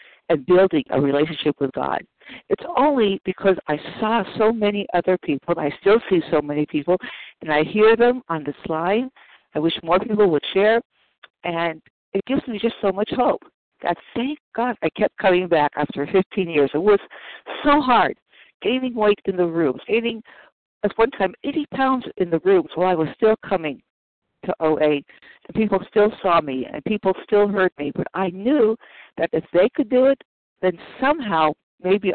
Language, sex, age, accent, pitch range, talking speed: English, female, 60-79, American, 160-220 Hz, 185 wpm